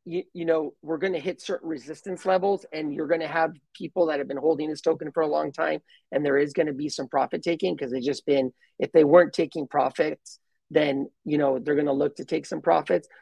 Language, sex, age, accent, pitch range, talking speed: English, male, 30-49, American, 145-170 Hz, 245 wpm